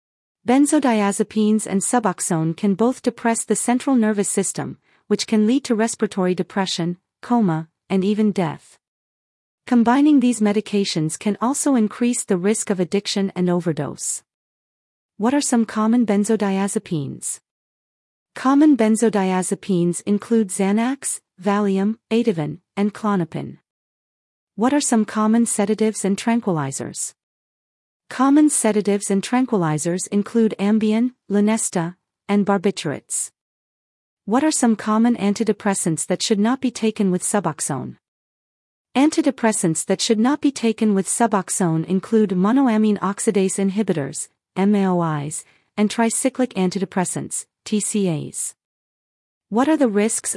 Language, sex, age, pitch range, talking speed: English, female, 40-59, 190-230 Hz, 110 wpm